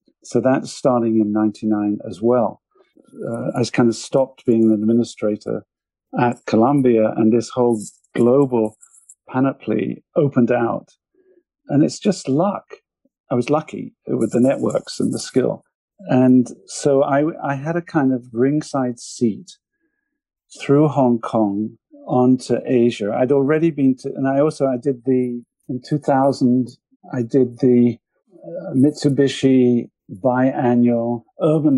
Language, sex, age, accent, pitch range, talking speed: English, male, 50-69, British, 115-140 Hz, 135 wpm